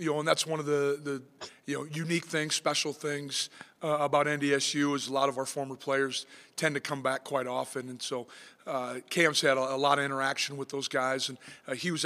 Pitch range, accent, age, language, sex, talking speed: 135-155 Hz, American, 40-59, English, male, 235 wpm